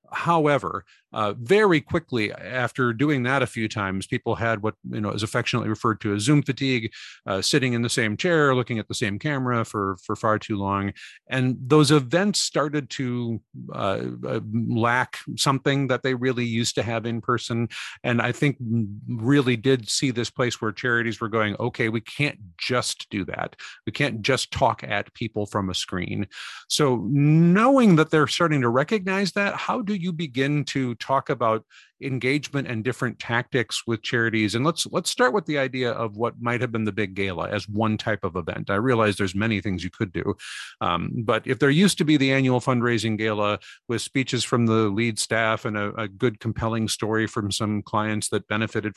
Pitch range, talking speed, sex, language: 110-135 Hz, 195 wpm, male, English